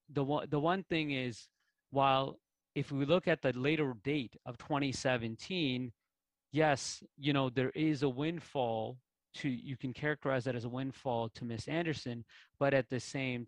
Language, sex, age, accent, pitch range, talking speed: English, male, 30-49, American, 125-150 Hz, 175 wpm